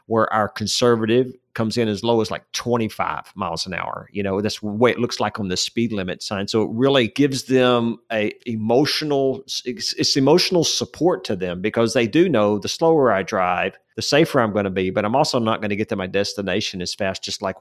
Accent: American